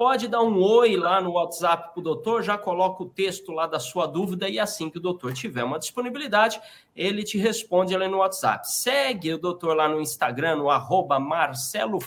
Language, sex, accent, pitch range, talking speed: Portuguese, male, Brazilian, 160-210 Hz, 200 wpm